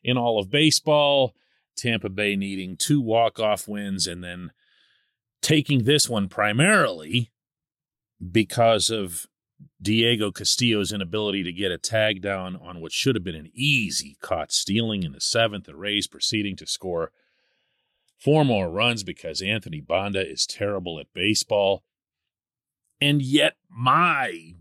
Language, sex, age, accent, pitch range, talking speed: English, male, 40-59, American, 105-175 Hz, 135 wpm